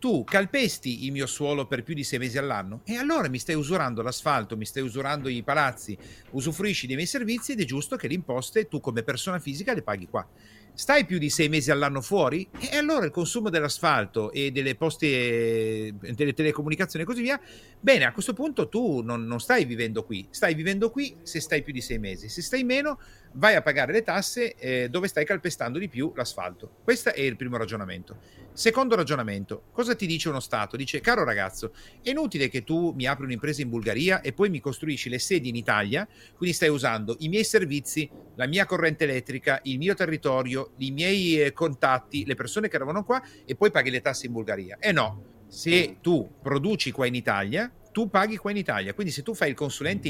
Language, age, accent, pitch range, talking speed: Italian, 40-59, native, 125-185 Hz, 205 wpm